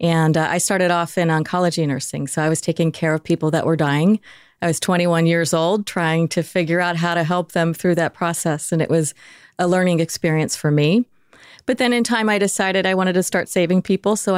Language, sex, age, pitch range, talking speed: English, female, 30-49, 155-185 Hz, 230 wpm